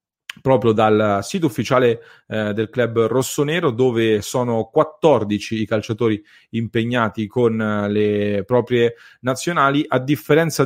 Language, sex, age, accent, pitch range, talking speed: English, male, 30-49, Italian, 110-130 Hz, 115 wpm